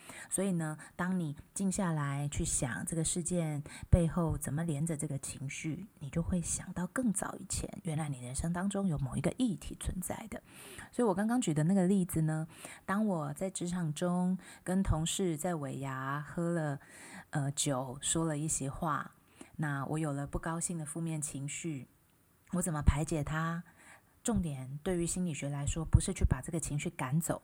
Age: 20-39